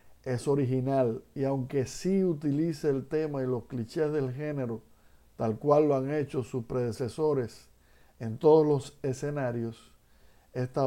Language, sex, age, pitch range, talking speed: Spanish, male, 60-79, 120-145 Hz, 140 wpm